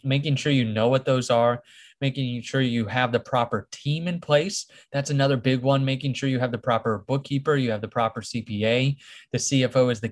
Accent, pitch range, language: American, 120-140 Hz, English